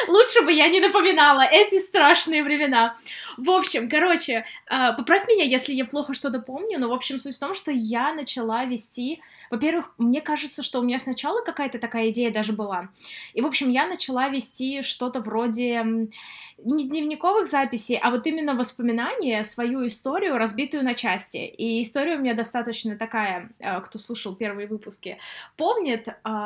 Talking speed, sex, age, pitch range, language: 160 wpm, female, 20-39, 225-275 Hz, Russian